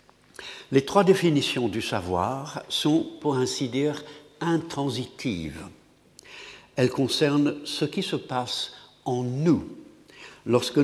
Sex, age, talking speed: male, 60-79, 105 wpm